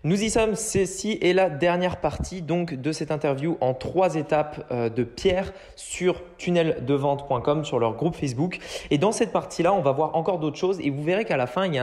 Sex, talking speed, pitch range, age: male, 210 wpm, 135-180 Hz, 20-39